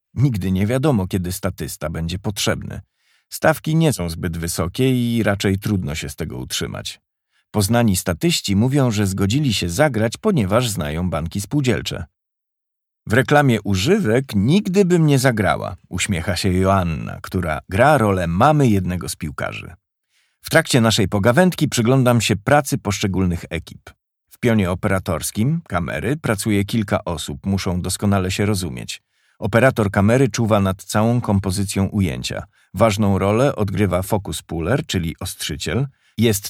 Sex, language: male, Polish